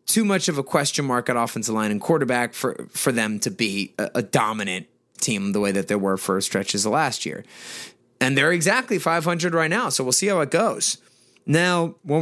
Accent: American